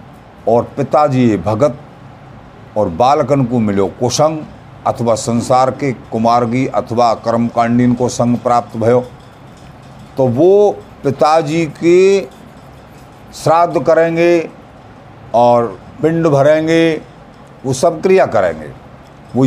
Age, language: 50-69, Hindi